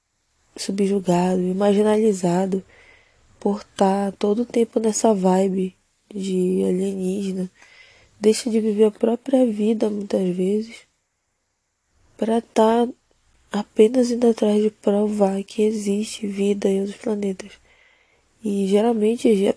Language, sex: Portuguese, female